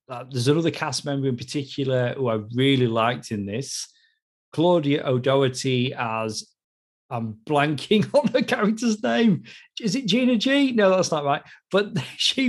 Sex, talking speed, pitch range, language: male, 155 wpm, 120-145 Hz, English